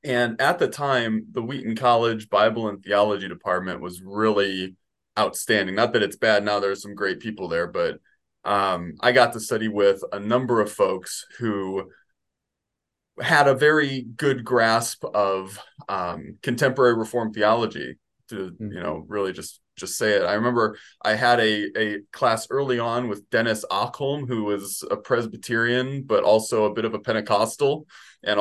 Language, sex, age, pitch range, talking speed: English, male, 20-39, 100-120 Hz, 165 wpm